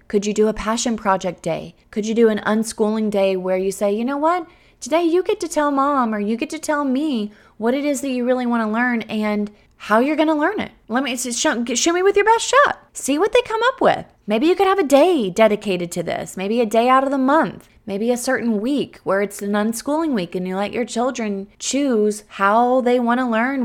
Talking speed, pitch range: 250 wpm, 210-320 Hz